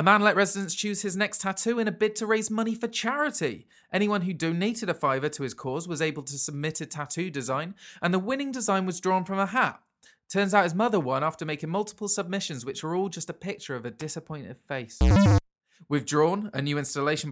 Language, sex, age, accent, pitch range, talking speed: English, male, 20-39, British, 135-190 Hz, 220 wpm